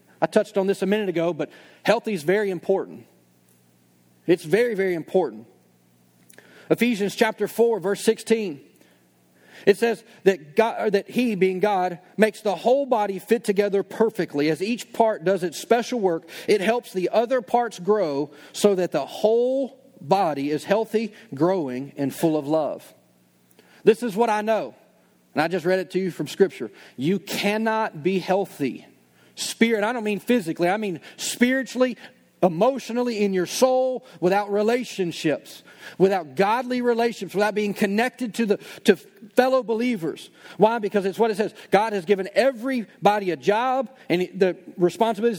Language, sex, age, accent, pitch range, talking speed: English, male, 40-59, American, 170-225 Hz, 160 wpm